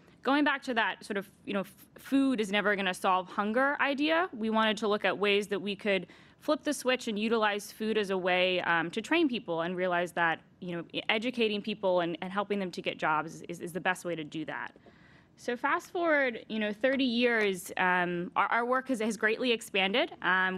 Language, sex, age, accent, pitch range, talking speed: English, female, 10-29, American, 195-250 Hz, 220 wpm